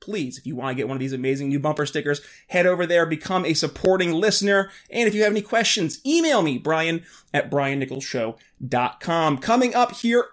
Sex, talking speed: male, 200 wpm